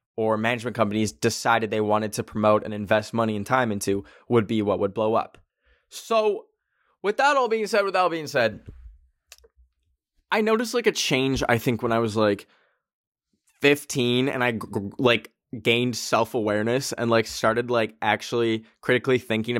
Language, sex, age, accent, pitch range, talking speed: English, male, 20-39, American, 110-130 Hz, 160 wpm